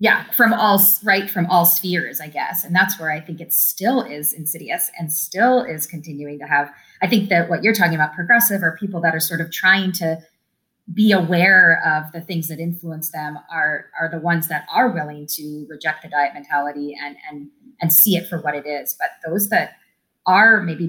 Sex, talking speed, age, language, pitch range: female, 215 wpm, 30-49, English, 155-200 Hz